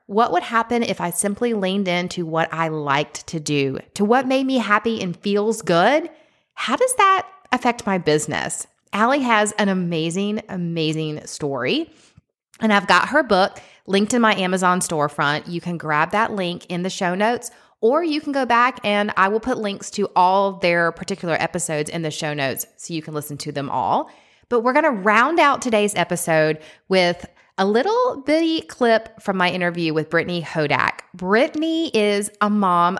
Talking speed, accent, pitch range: 185 wpm, American, 170-230 Hz